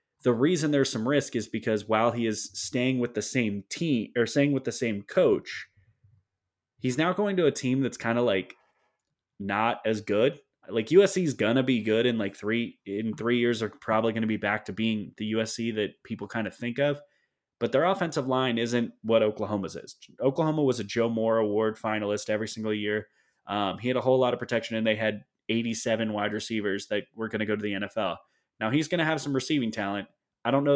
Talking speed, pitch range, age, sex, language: 220 wpm, 105-120 Hz, 20-39, male, English